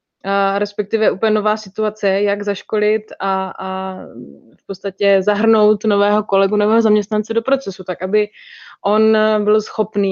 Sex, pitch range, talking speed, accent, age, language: female, 195-225 Hz, 135 wpm, native, 20-39, Czech